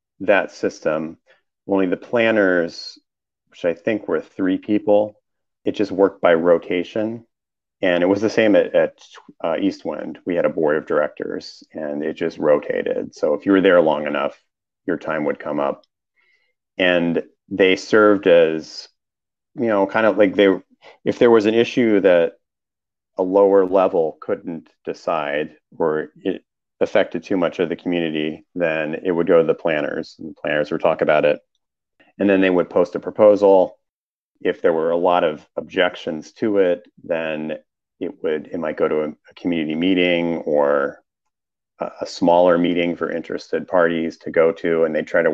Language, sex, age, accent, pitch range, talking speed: English, male, 40-59, American, 85-110 Hz, 170 wpm